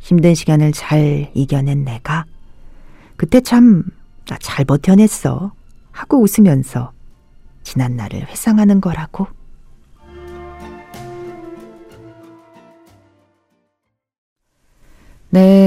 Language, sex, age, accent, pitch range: Korean, female, 40-59, native, 135-215 Hz